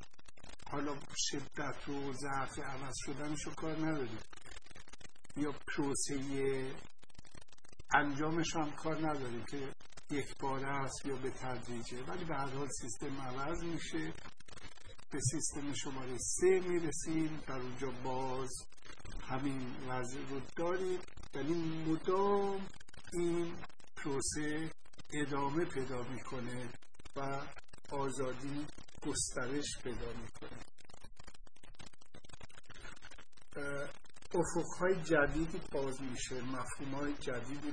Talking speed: 85 wpm